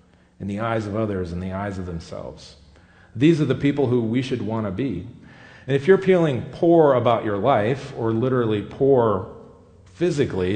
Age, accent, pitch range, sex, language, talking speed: 40-59, American, 90-140 Hz, male, English, 180 wpm